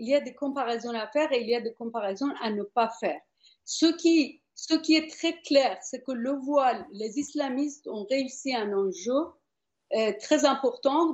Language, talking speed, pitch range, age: French, 195 wpm, 235-310 Hz, 50-69